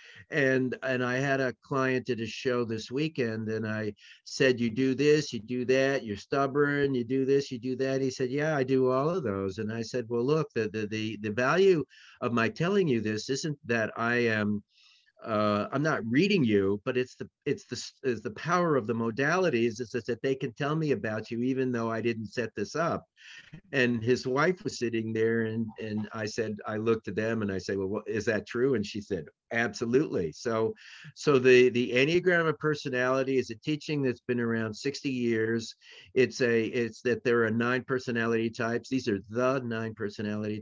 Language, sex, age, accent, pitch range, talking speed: English, male, 50-69, American, 110-130 Hz, 205 wpm